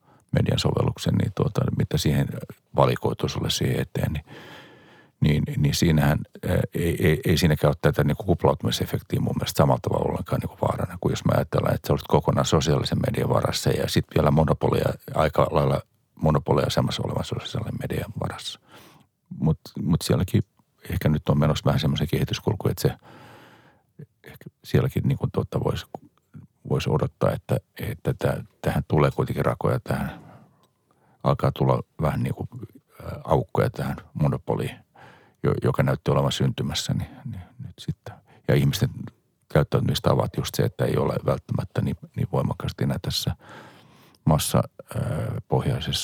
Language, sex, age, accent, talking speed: Finnish, male, 50-69, native, 145 wpm